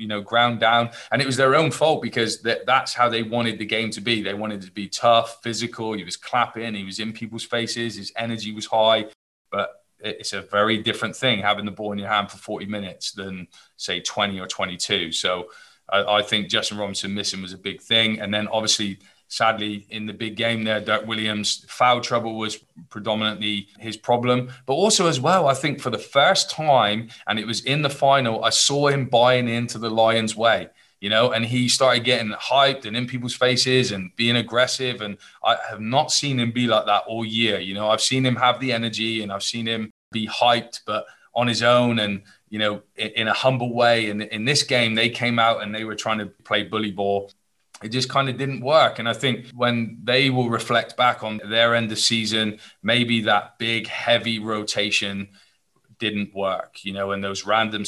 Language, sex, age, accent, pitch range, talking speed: English, male, 20-39, British, 105-120 Hz, 215 wpm